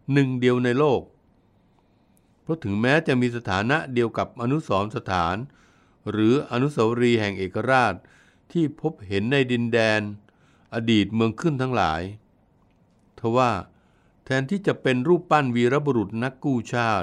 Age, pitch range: 60-79, 100-135 Hz